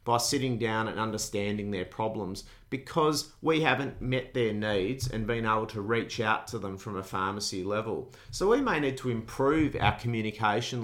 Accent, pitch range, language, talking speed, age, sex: Australian, 105-125 Hz, English, 185 wpm, 40-59, male